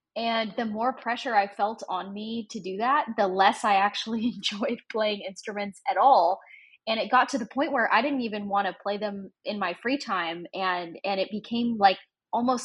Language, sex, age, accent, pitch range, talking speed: English, female, 10-29, American, 190-230 Hz, 210 wpm